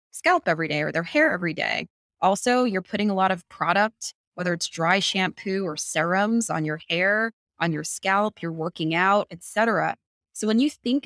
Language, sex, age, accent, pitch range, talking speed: English, female, 20-39, American, 165-200 Hz, 195 wpm